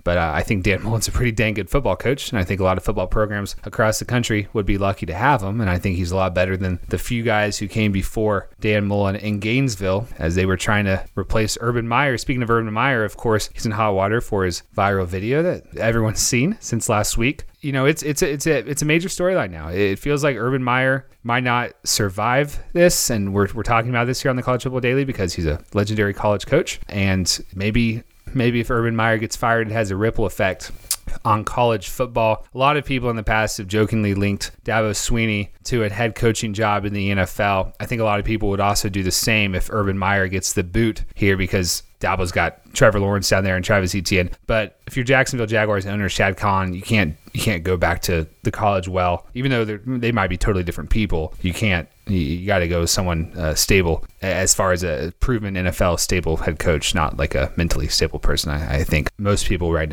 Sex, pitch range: male, 95-115 Hz